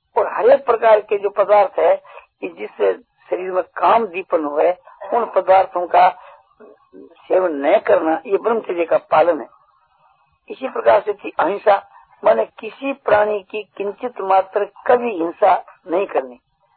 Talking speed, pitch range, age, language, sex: 145 wpm, 190-310 Hz, 60-79, Hindi, female